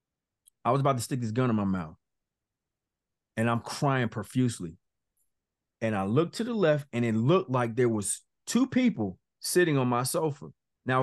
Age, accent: 40-59, American